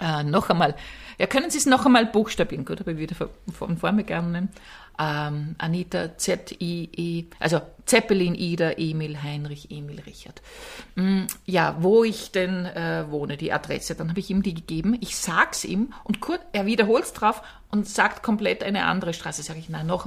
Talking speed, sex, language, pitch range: 190 wpm, female, German, 170-235 Hz